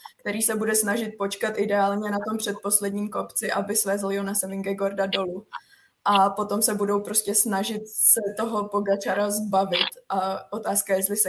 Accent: native